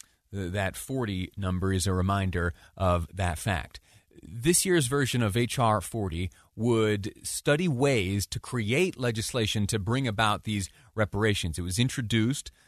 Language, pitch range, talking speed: English, 95-115 Hz, 135 wpm